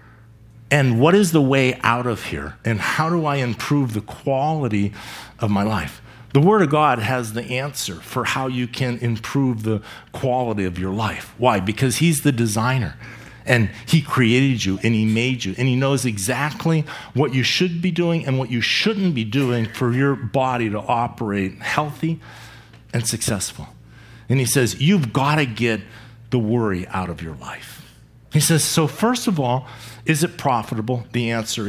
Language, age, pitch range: English, 50-69, 115-145 Hz